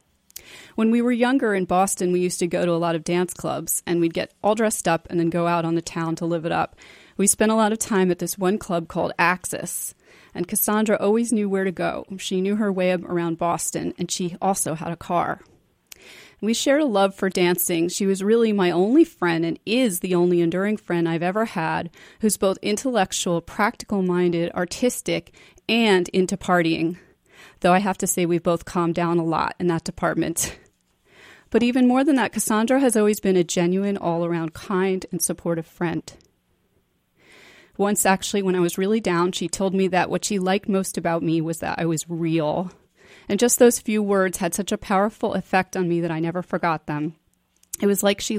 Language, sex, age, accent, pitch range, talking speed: English, female, 30-49, American, 170-205 Hz, 210 wpm